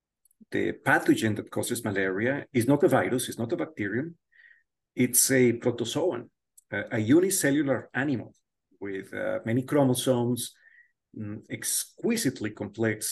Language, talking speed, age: English, 125 wpm, 40-59